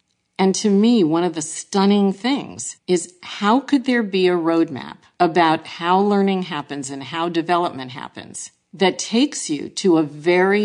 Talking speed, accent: 165 wpm, American